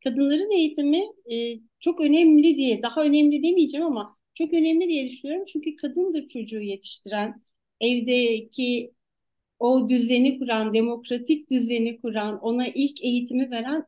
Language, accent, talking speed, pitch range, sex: Turkish, native, 125 wpm, 240-315 Hz, female